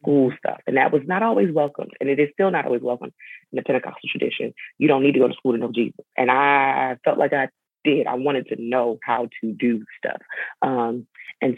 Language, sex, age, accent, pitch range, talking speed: English, female, 20-39, American, 120-145 Hz, 235 wpm